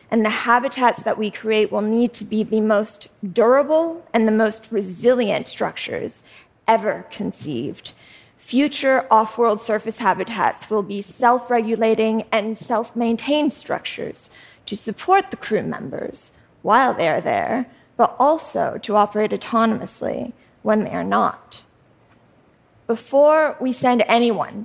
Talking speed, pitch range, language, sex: 125 wpm, 210-245 Hz, English, female